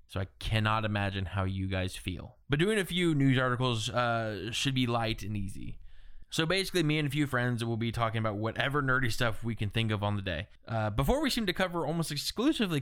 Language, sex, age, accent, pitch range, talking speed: English, male, 20-39, American, 110-145 Hz, 230 wpm